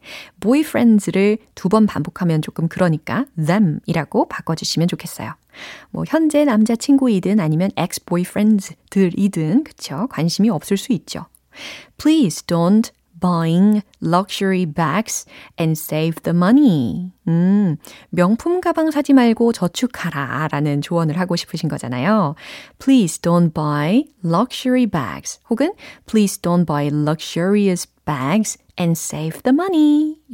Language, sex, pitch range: Korean, female, 165-235 Hz